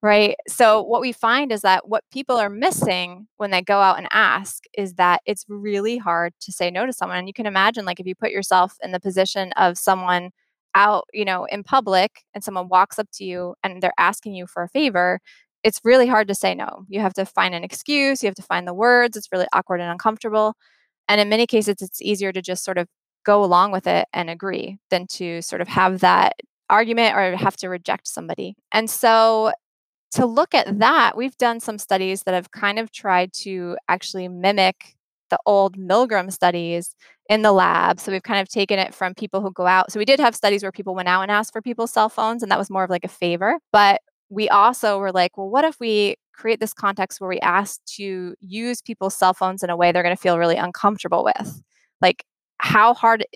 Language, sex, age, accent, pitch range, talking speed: English, female, 20-39, American, 185-220 Hz, 230 wpm